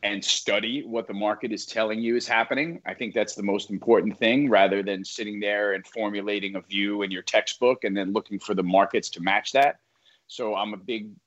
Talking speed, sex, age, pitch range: 220 wpm, male, 30-49, 100-125 Hz